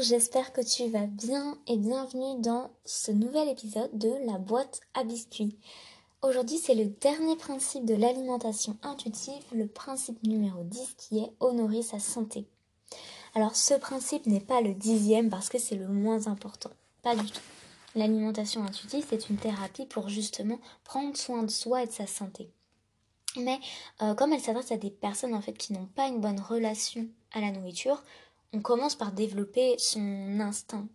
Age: 20-39